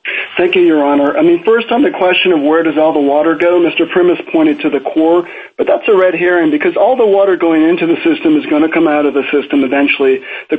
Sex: male